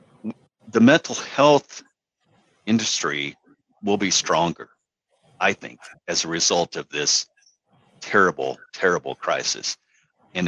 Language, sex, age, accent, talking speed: English, male, 50-69, American, 105 wpm